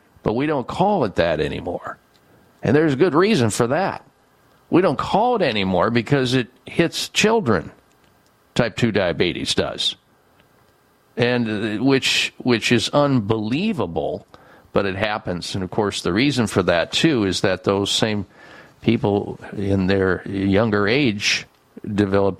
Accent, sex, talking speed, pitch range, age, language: American, male, 140 wpm, 100-125 Hz, 50-69, English